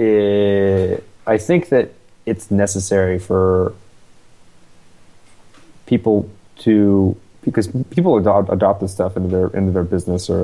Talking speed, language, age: 120 wpm, English, 30-49